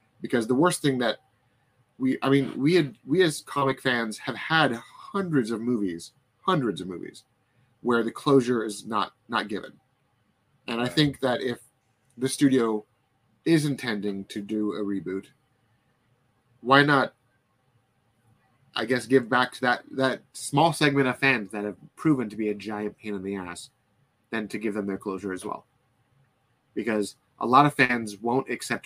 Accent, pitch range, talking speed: American, 110-135 Hz, 170 wpm